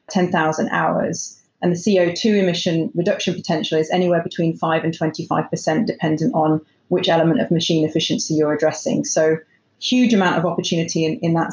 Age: 30-49